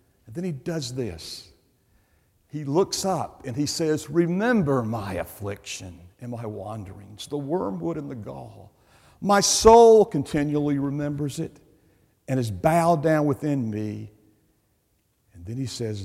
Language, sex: English, male